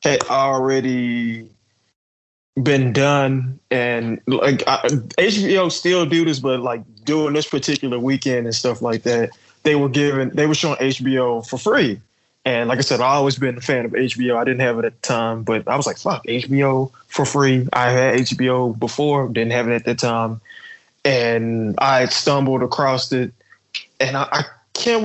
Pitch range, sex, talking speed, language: 120-135 Hz, male, 175 wpm, English